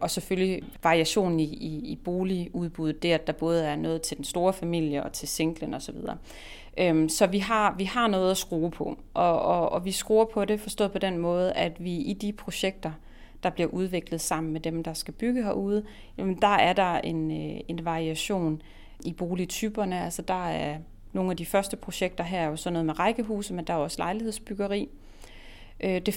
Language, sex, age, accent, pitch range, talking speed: Danish, female, 30-49, native, 165-195 Hz, 200 wpm